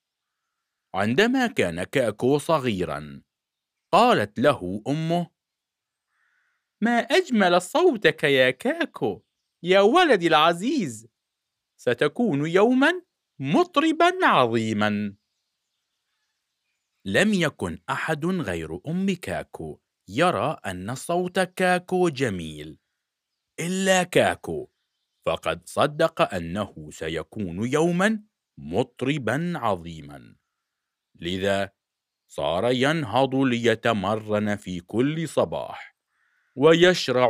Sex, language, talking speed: male, Arabic, 75 wpm